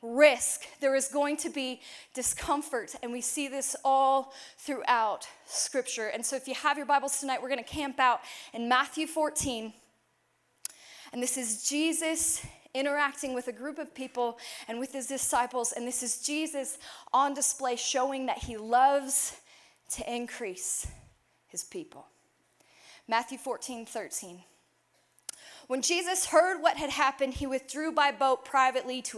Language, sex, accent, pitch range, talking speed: English, female, American, 240-290 Hz, 150 wpm